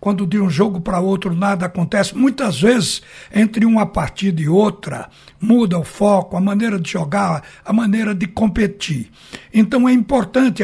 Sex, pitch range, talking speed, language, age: male, 180-220 Hz, 165 wpm, Portuguese, 60-79